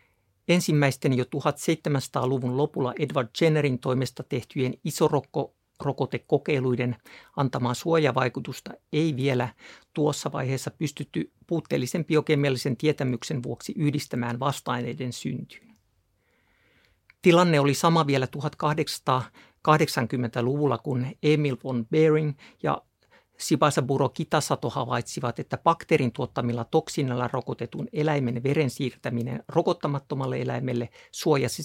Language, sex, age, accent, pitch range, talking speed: Finnish, male, 60-79, native, 125-155 Hz, 85 wpm